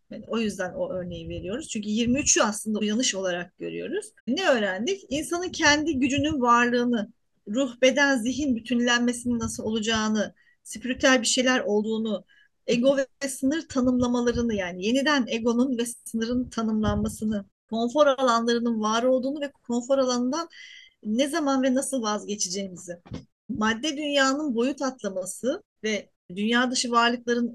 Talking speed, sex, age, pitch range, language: 125 wpm, female, 30-49, 225-280 Hz, Turkish